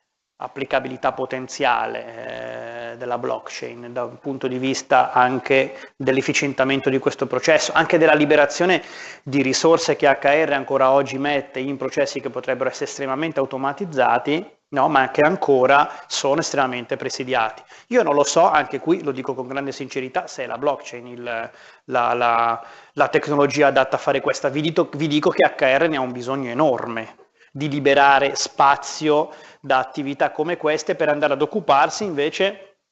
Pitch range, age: 130-150 Hz, 30-49